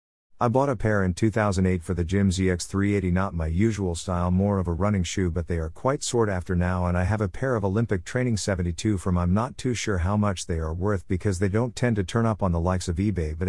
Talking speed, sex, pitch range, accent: 260 wpm, male, 90-110 Hz, American